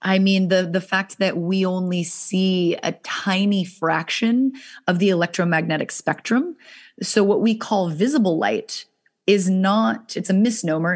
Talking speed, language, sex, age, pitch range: 150 wpm, English, female, 30-49, 170-215 Hz